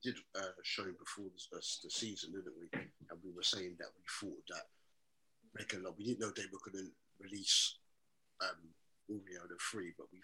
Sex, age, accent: male, 50-69, British